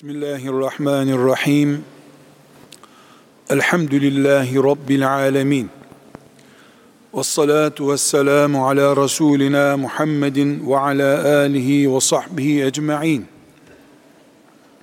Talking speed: 60 wpm